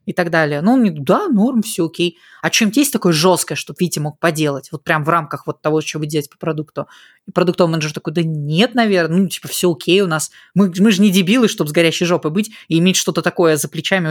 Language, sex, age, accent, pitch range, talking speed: Russian, female, 20-39, native, 160-205 Hz, 255 wpm